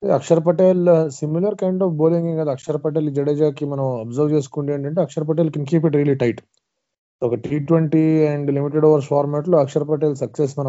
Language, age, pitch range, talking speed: Telugu, 20-39, 135-160 Hz, 190 wpm